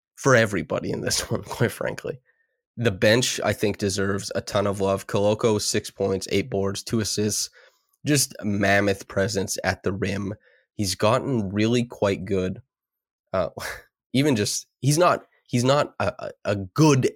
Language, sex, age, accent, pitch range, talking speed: English, male, 20-39, American, 100-125 Hz, 155 wpm